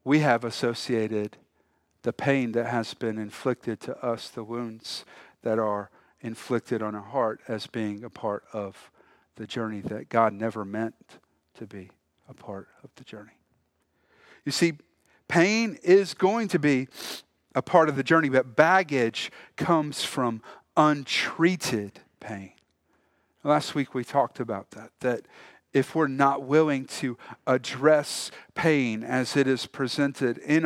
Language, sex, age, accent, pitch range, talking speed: English, male, 40-59, American, 110-155 Hz, 145 wpm